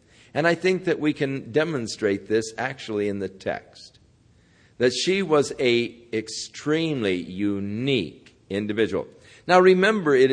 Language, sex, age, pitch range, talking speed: English, male, 50-69, 110-145 Hz, 130 wpm